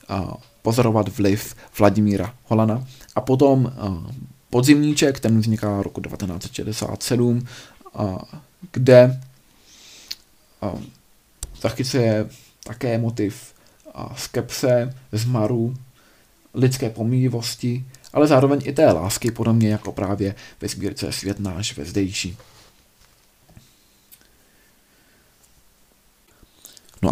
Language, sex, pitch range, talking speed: Czech, male, 105-125 Hz, 85 wpm